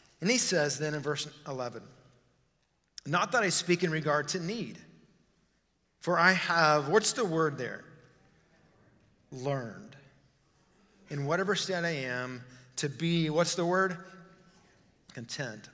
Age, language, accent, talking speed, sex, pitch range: 40-59, English, American, 130 wpm, male, 135-175 Hz